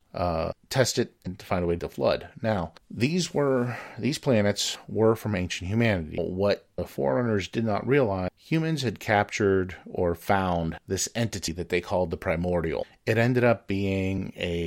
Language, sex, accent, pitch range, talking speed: English, male, American, 90-110 Hz, 170 wpm